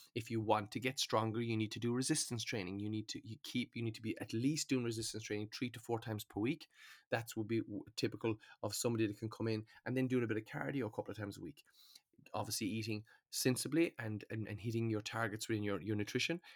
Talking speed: 245 wpm